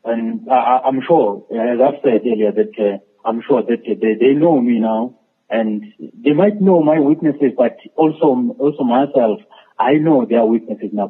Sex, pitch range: male, 110-130 Hz